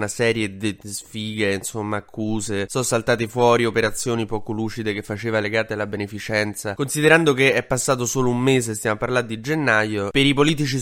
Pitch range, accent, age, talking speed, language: 105-135 Hz, native, 20-39, 175 wpm, Italian